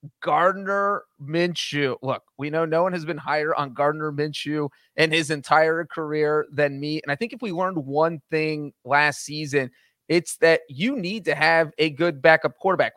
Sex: male